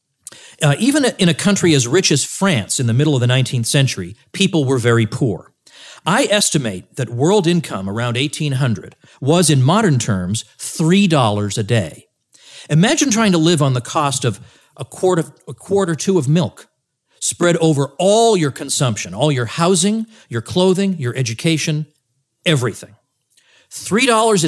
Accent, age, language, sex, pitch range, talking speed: American, 50-69, English, male, 125-185 Hz, 155 wpm